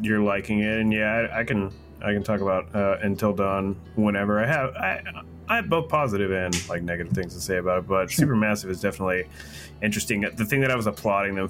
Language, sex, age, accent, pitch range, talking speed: English, male, 30-49, American, 90-110 Hz, 225 wpm